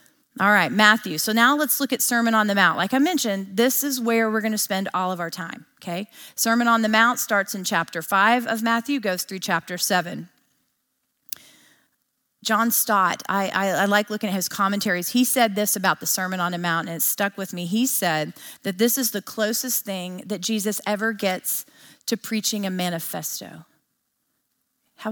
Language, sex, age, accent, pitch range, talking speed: English, female, 40-59, American, 190-235 Hz, 195 wpm